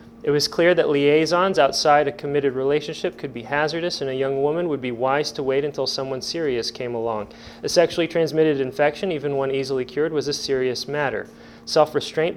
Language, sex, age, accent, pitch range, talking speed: English, male, 30-49, American, 135-165 Hz, 190 wpm